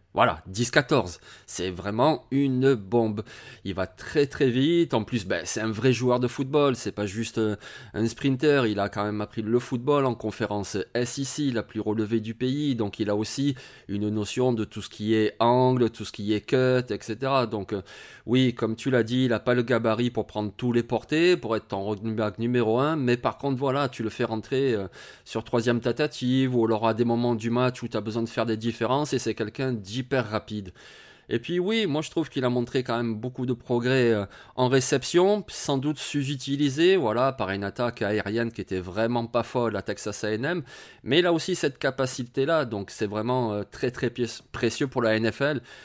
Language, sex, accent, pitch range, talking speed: French, male, French, 110-135 Hz, 210 wpm